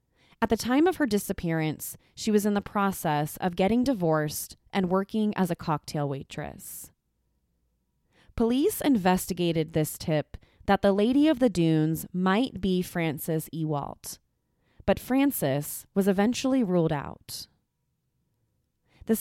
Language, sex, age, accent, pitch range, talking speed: English, female, 20-39, American, 155-210 Hz, 130 wpm